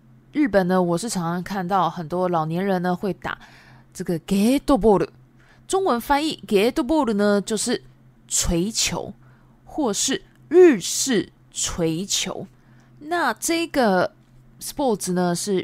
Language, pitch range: Japanese, 165-250 Hz